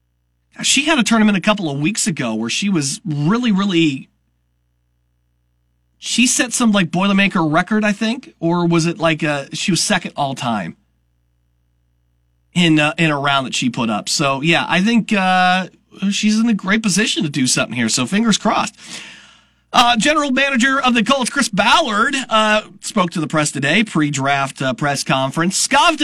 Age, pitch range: 40-59, 140-215 Hz